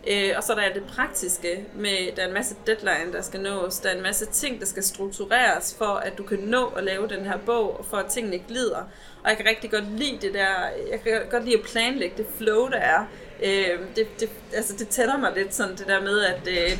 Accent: native